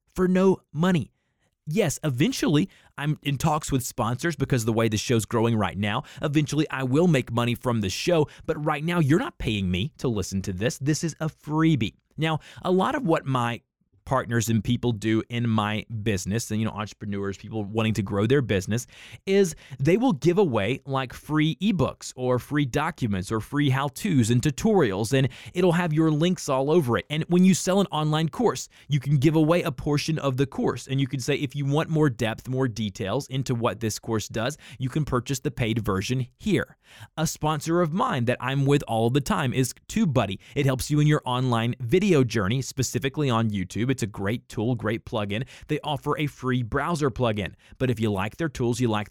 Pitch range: 115-150 Hz